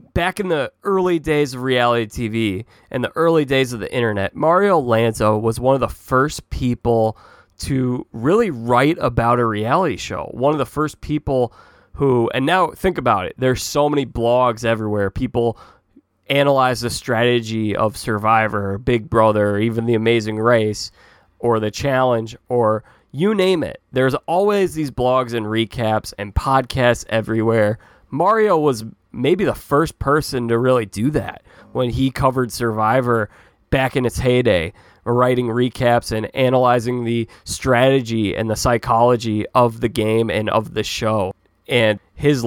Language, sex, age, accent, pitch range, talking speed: English, male, 20-39, American, 110-130 Hz, 155 wpm